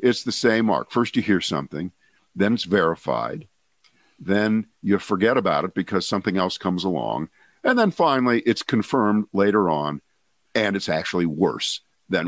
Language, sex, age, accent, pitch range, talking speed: English, male, 50-69, American, 100-140 Hz, 160 wpm